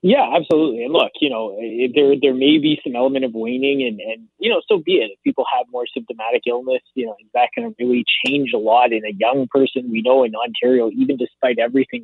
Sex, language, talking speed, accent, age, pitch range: male, English, 230 wpm, American, 20-39, 115-150 Hz